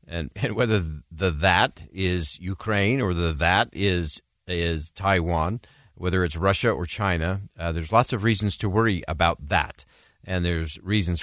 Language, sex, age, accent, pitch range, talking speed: English, male, 50-69, American, 80-100 Hz, 165 wpm